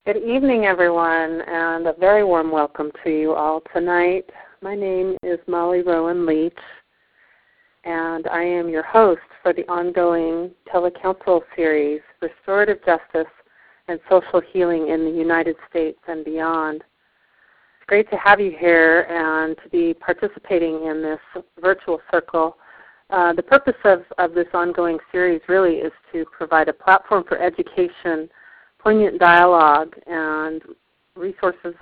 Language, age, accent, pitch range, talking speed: English, 40-59, American, 165-195 Hz, 140 wpm